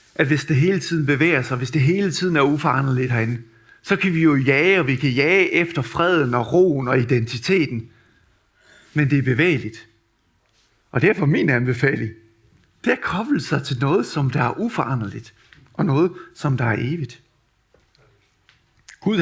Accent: native